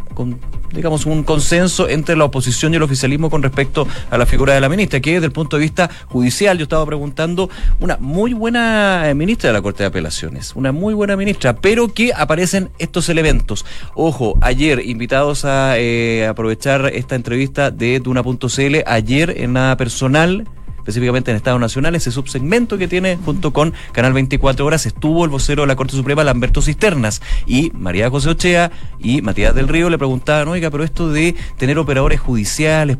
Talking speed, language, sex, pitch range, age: 180 wpm, Spanish, male, 120-155 Hz, 30-49